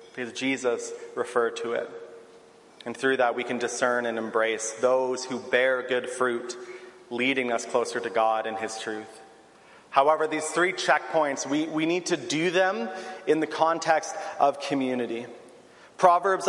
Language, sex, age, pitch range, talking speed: English, male, 30-49, 145-185 Hz, 155 wpm